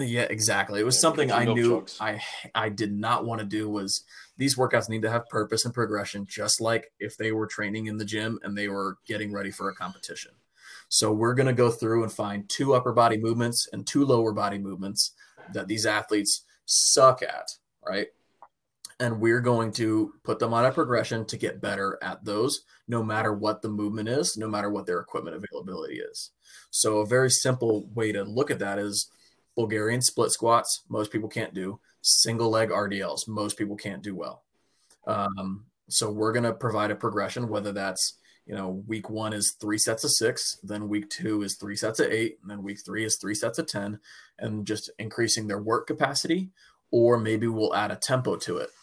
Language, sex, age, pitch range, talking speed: English, male, 20-39, 105-115 Hz, 200 wpm